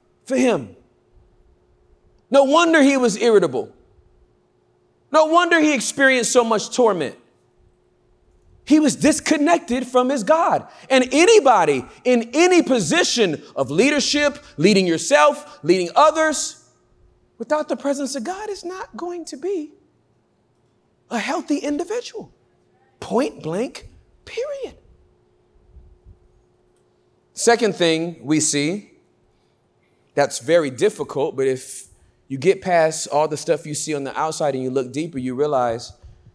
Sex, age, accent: male, 40-59, American